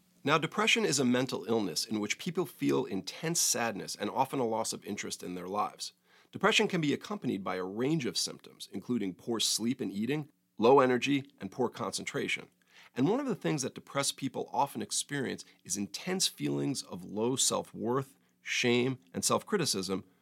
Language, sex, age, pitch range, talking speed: English, male, 40-59, 110-150 Hz, 175 wpm